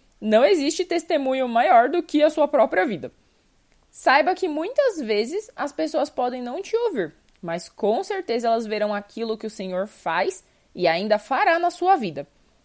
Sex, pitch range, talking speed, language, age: female, 200-310 Hz, 170 wpm, Portuguese, 20-39